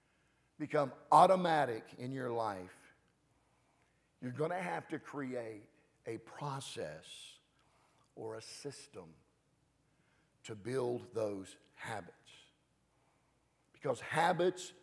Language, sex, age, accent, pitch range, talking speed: English, male, 50-69, American, 135-165 Hz, 90 wpm